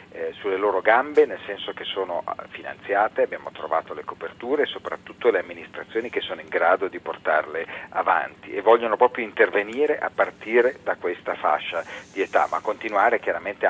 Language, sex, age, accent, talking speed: Italian, male, 40-59, native, 165 wpm